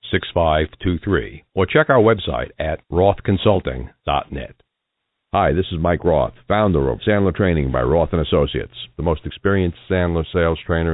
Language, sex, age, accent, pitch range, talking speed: English, male, 60-79, American, 85-115 Hz, 160 wpm